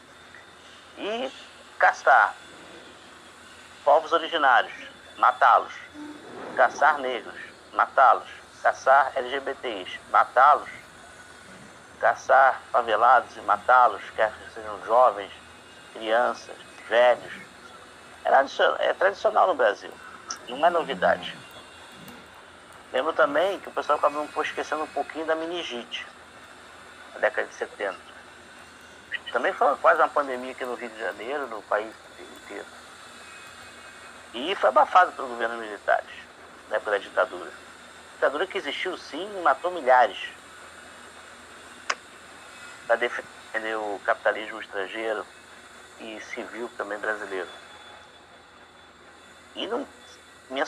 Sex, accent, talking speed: male, Brazilian, 105 wpm